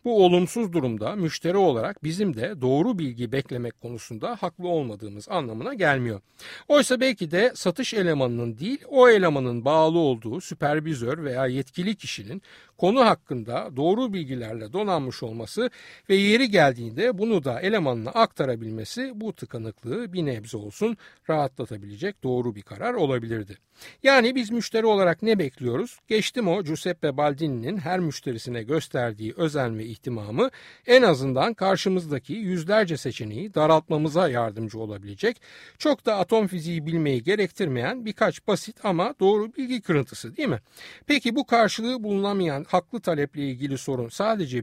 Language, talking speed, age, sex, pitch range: Turkish, 135 wpm, 60-79, male, 130-210 Hz